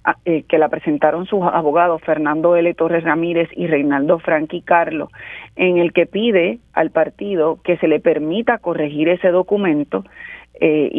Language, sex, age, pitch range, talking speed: Spanish, female, 40-59, 160-195 Hz, 150 wpm